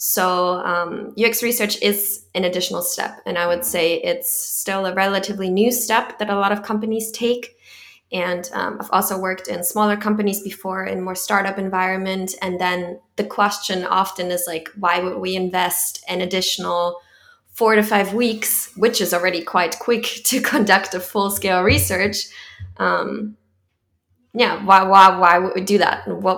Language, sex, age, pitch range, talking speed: English, female, 20-39, 175-200 Hz, 170 wpm